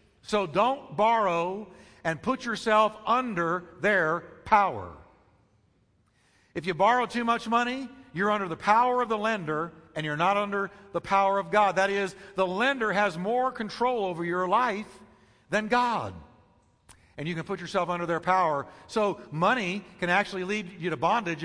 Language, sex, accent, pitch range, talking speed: English, male, American, 165-210 Hz, 160 wpm